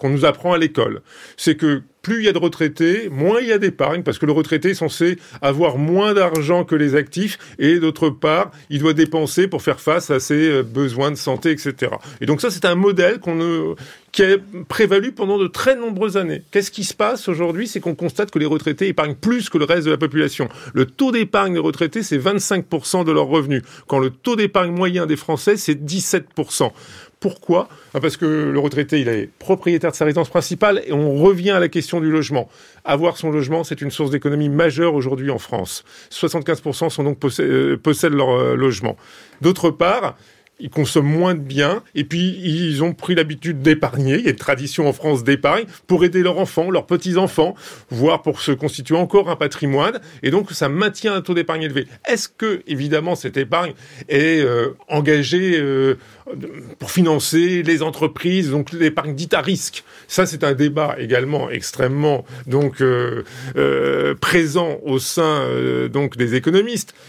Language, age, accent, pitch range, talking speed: French, 40-59, French, 145-180 Hz, 190 wpm